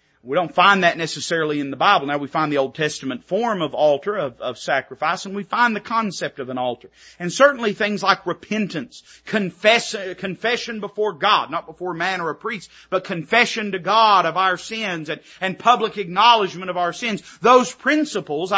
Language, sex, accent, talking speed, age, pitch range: English, male, American, 185 wpm, 40-59, 150-215 Hz